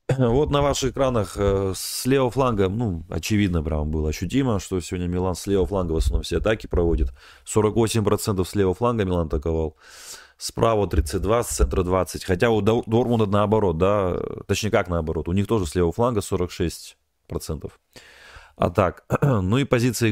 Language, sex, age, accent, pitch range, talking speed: Russian, male, 30-49, native, 85-115 Hz, 165 wpm